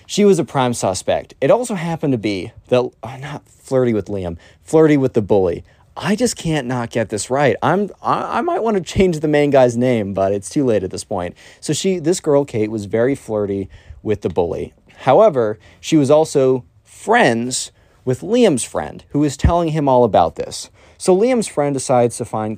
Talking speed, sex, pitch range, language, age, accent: 205 wpm, male, 100-135 Hz, English, 30-49, American